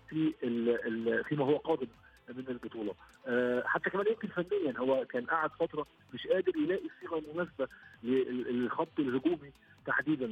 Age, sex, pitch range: 50-69, male, 125-155 Hz